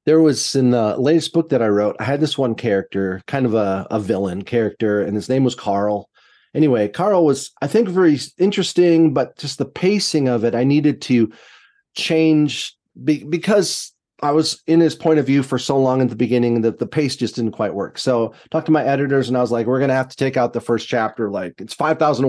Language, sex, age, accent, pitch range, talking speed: English, male, 30-49, American, 115-150 Hz, 235 wpm